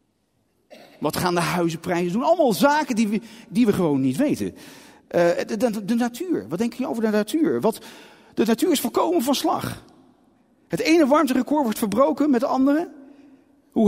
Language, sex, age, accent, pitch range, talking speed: Dutch, male, 40-59, Dutch, 210-295 Hz, 165 wpm